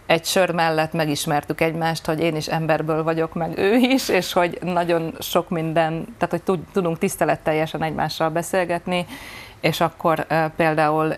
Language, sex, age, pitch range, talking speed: Hungarian, female, 30-49, 160-180 Hz, 145 wpm